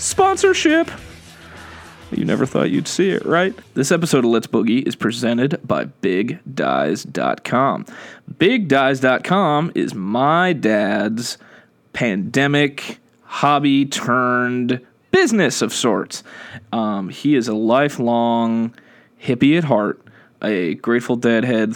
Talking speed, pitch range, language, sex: 105 wpm, 115-165 Hz, English, male